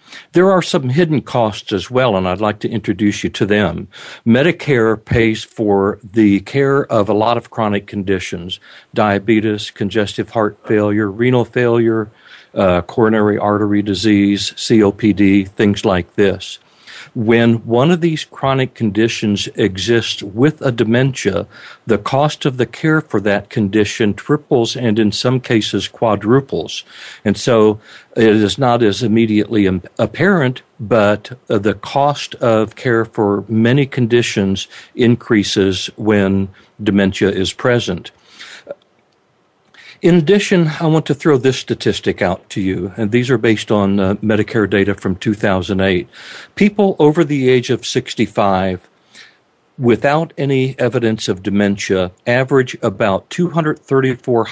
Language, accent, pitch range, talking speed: English, American, 105-125 Hz, 130 wpm